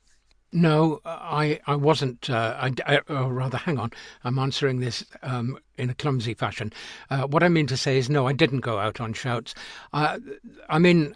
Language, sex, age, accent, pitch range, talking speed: English, male, 60-79, British, 120-150 Hz, 200 wpm